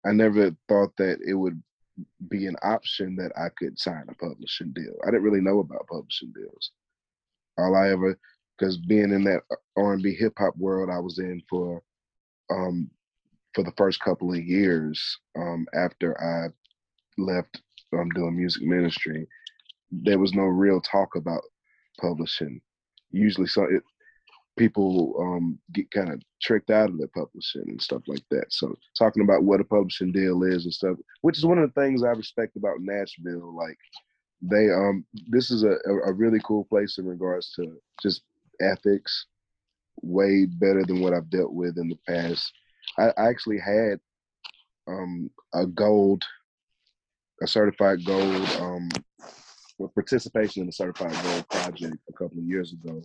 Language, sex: English, male